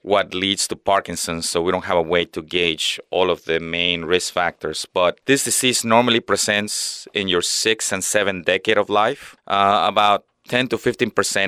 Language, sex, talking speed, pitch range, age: English, male, 180 wpm, 90-110 Hz, 30-49